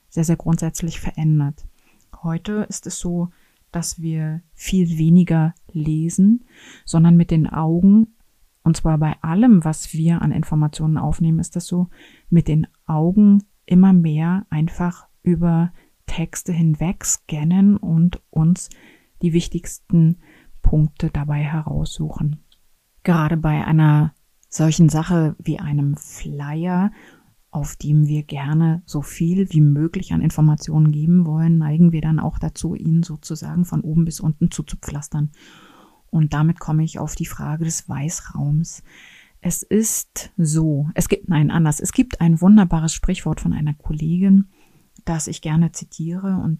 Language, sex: German, female